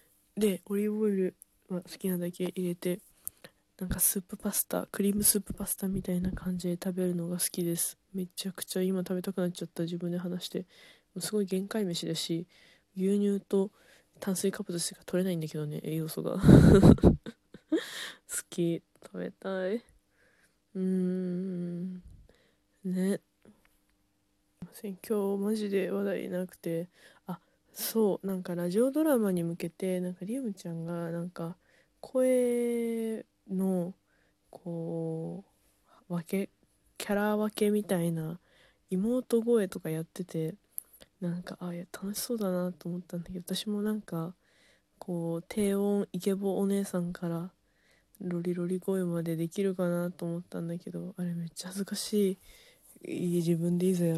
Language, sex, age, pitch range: Japanese, female, 20-39, 175-200 Hz